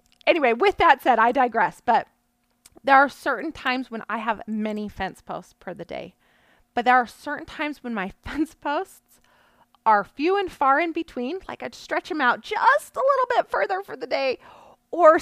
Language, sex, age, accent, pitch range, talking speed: English, female, 30-49, American, 200-250 Hz, 195 wpm